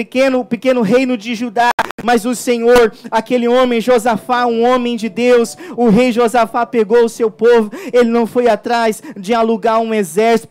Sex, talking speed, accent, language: male, 170 wpm, Brazilian, Portuguese